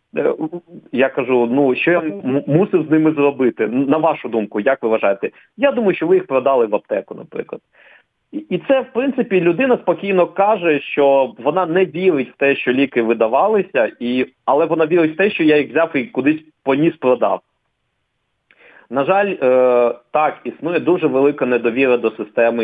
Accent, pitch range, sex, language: native, 125-175 Hz, male, Ukrainian